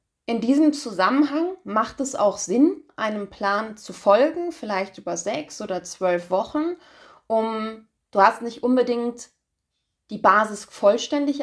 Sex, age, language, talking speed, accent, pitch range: female, 20-39, German, 130 wpm, German, 195-235 Hz